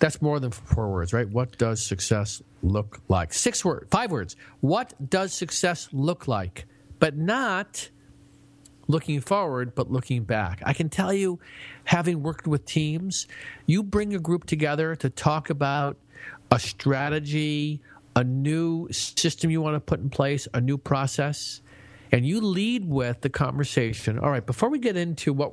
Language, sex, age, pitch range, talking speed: English, male, 50-69, 120-155 Hz, 165 wpm